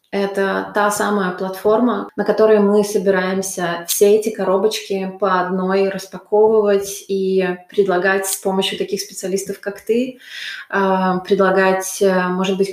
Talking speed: 120 wpm